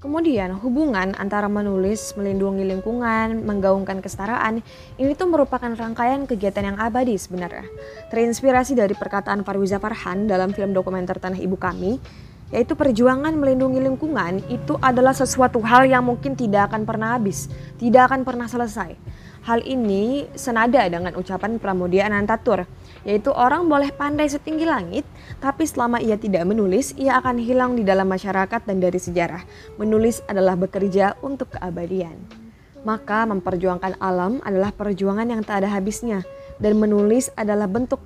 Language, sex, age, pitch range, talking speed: Indonesian, female, 20-39, 190-250 Hz, 140 wpm